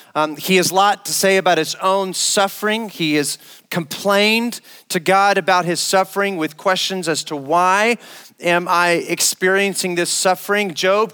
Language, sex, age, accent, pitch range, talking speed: English, male, 40-59, American, 160-205 Hz, 160 wpm